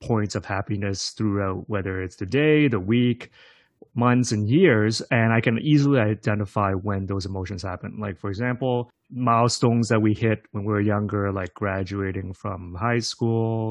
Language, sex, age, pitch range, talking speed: English, male, 30-49, 95-115 Hz, 165 wpm